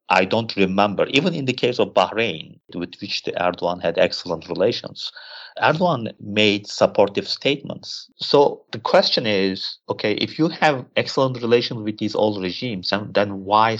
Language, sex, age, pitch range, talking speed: English, male, 50-69, 95-115 Hz, 150 wpm